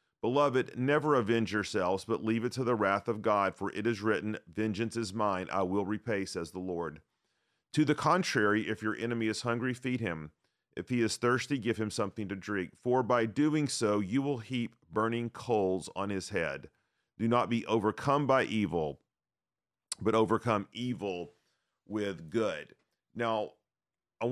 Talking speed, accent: 170 wpm, American